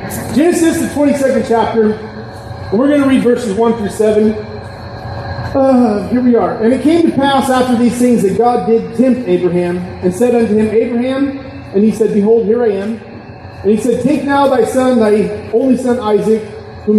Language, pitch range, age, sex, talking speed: English, 185-225 Hz, 30-49, male, 190 wpm